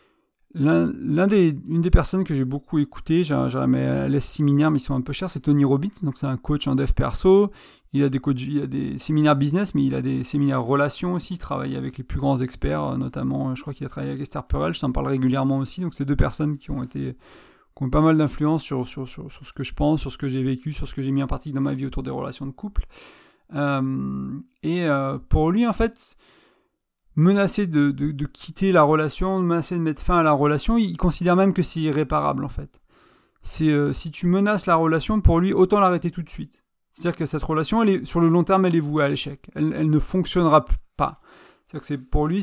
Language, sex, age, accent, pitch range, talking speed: French, male, 30-49, French, 135-175 Hz, 250 wpm